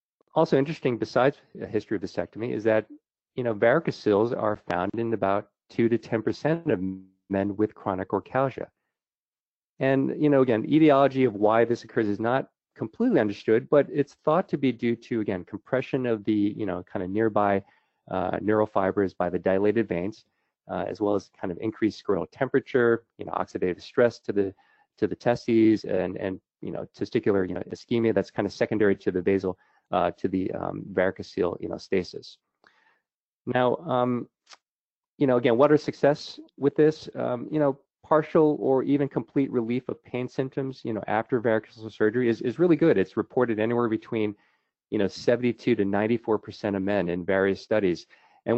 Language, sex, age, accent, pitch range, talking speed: English, male, 30-49, American, 105-135 Hz, 180 wpm